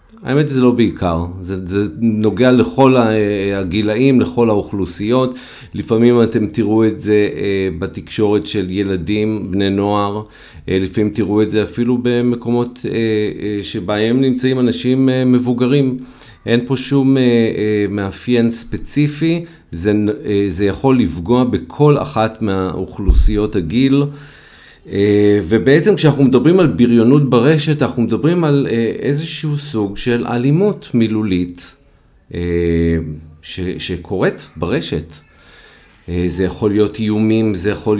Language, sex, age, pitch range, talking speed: Hebrew, male, 40-59, 95-125 Hz, 110 wpm